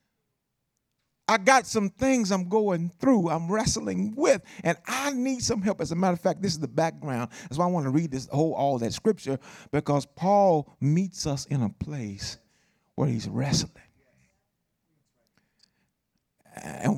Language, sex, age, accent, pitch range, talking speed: English, male, 50-69, American, 145-215 Hz, 165 wpm